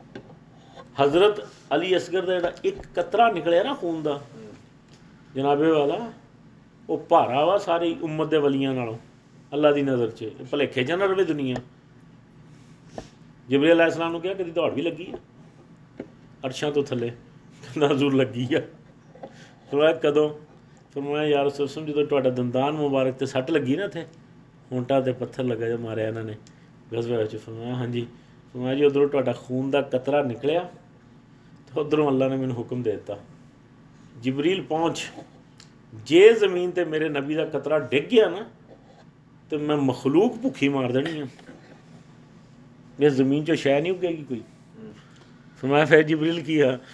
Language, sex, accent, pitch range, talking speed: English, male, Indian, 130-165 Hz, 100 wpm